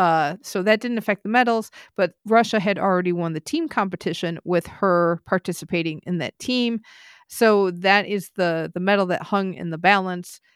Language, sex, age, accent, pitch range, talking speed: English, female, 40-59, American, 170-205 Hz, 180 wpm